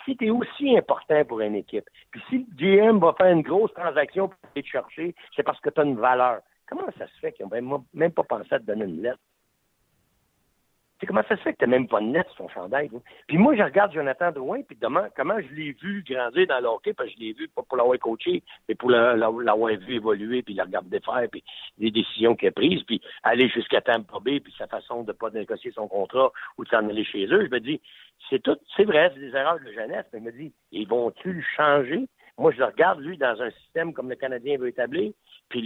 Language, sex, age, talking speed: French, male, 60-79, 250 wpm